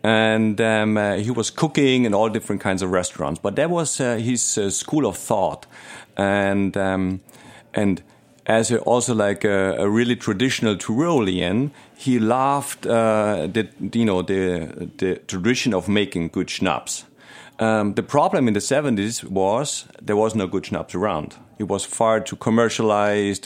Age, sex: 40-59, male